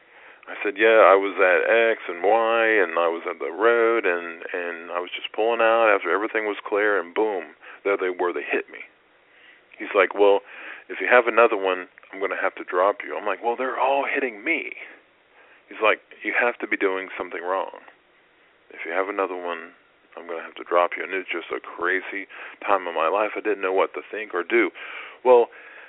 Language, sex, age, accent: English, male, 40-59, American